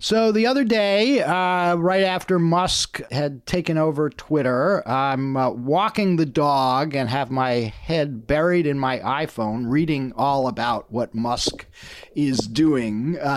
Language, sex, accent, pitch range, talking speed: English, male, American, 120-180 Hz, 150 wpm